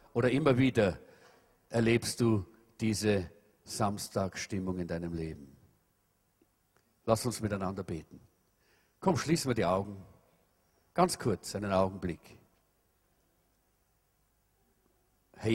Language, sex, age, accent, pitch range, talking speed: English, male, 50-69, German, 105-150 Hz, 95 wpm